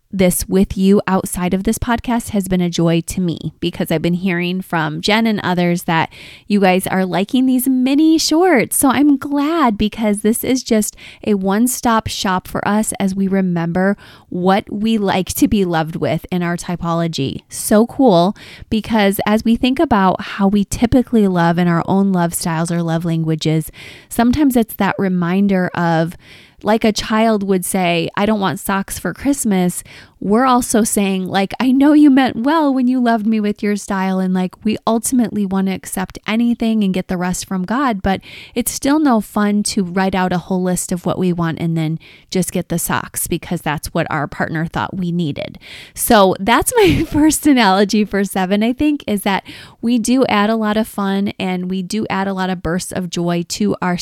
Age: 20-39